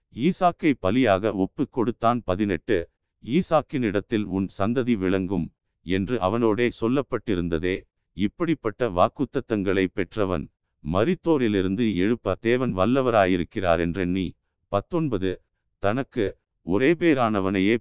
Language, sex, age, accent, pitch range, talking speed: Tamil, male, 50-69, native, 95-130 Hz, 80 wpm